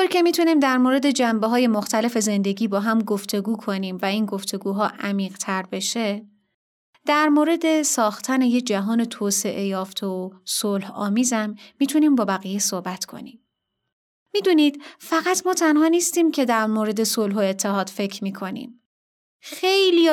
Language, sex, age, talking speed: Persian, female, 30-49, 140 wpm